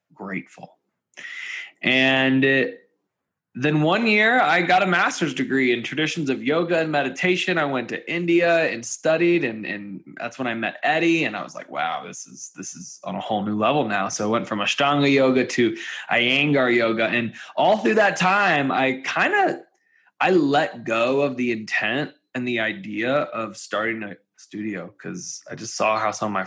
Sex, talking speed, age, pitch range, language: male, 190 wpm, 20-39, 115-155 Hz, English